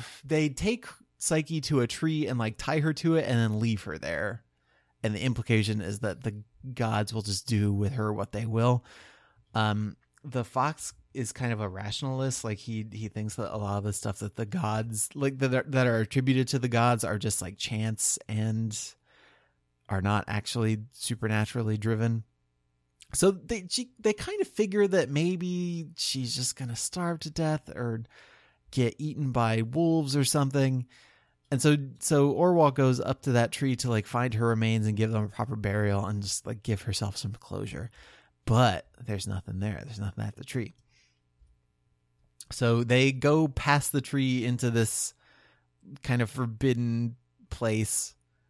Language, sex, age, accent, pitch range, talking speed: English, male, 30-49, American, 105-135 Hz, 175 wpm